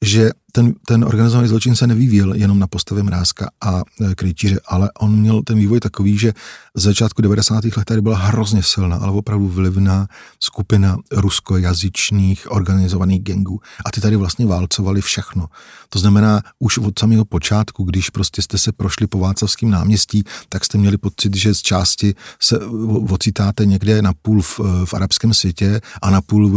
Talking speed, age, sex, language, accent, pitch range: 165 wpm, 40-59, male, Czech, native, 95-110 Hz